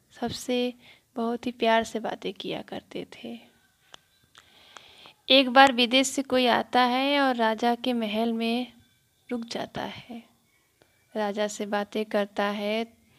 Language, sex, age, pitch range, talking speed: Hindi, female, 20-39, 205-235 Hz, 130 wpm